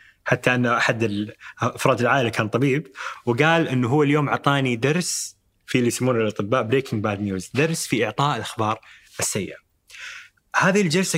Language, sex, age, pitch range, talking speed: Arabic, male, 20-39, 105-135 Hz, 145 wpm